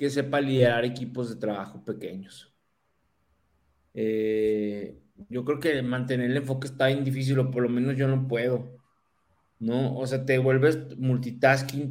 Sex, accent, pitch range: male, Mexican, 120-150 Hz